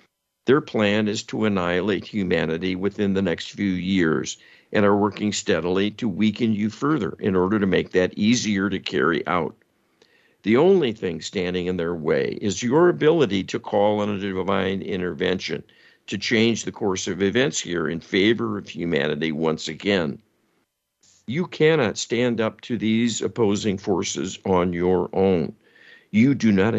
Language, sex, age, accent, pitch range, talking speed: English, male, 50-69, American, 90-110 Hz, 160 wpm